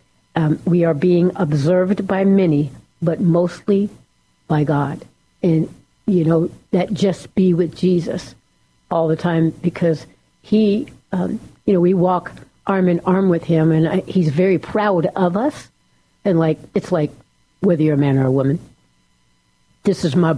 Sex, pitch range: female, 155-180 Hz